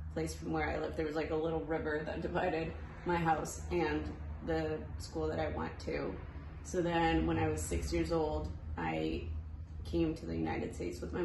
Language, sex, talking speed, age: English, female, 205 wpm, 20-39